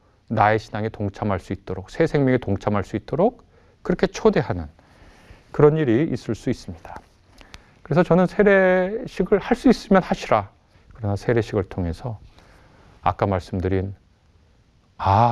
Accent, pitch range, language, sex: native, 95-130 Hz, Korean, male